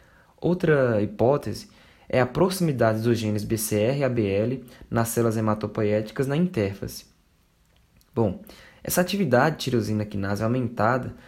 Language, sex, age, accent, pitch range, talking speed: Portuguese, male, 20-39, Brazilian, 110-140 Hz, 115 wpm